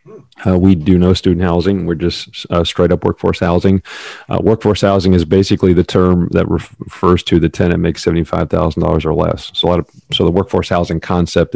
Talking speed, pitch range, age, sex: 205 wpm, 85-100 Hz, 40-59, male